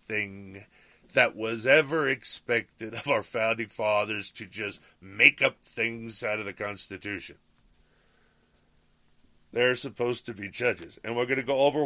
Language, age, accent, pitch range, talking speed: English, 40-59, American, 100-130 Hz, 140 wpm